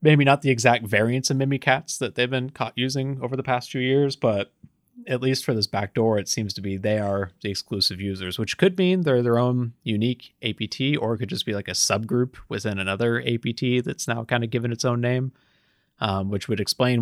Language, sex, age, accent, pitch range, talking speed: English, male, 30-49, American, 100-130 Hz, 220 wpm